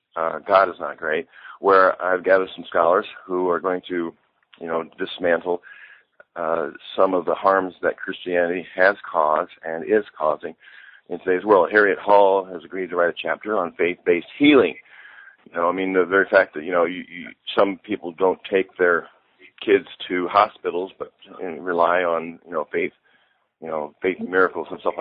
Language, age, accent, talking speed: English, 40-59, American, 180 wpm